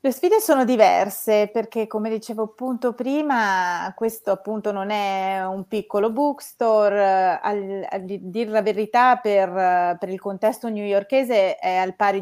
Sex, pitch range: female, 190-225 Hz